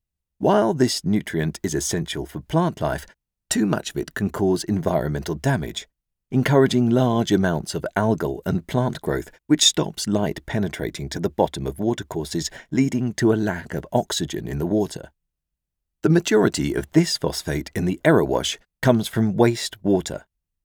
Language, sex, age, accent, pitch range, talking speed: English, male, 50-69, British, 80-125 Hz, 155 wpm